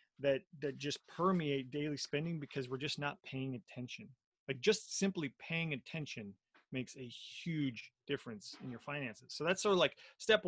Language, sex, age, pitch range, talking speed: English, male, 30-49, 135-180 Hz, 170 wpm